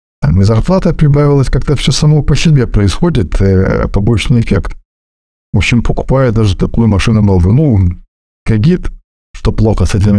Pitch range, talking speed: 90-120 Hz, 145 wpm